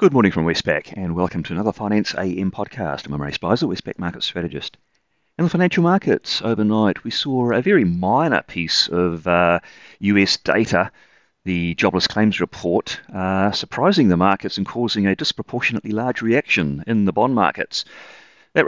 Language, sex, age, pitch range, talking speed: English, male, 40-59, 85-115 Hz, 165 wpm